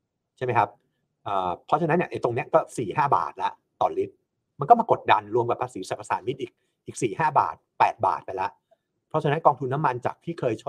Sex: male